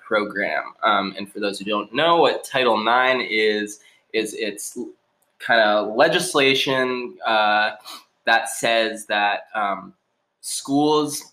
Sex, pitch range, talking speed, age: male, 105-130 Hz, 115 wpm, 20-39